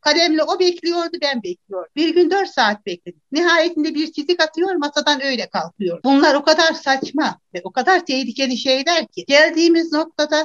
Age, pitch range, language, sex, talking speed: 60-79, 215-305 Hz, Turkish, female, 165 wpm